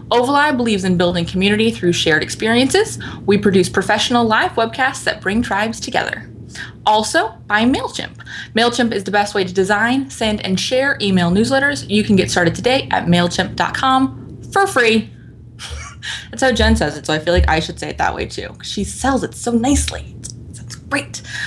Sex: female